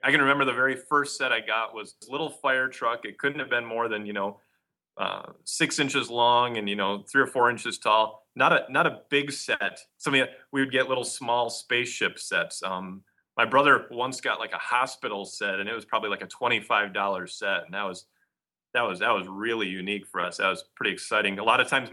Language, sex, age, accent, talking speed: English, male, 30-49, American, 235 wpm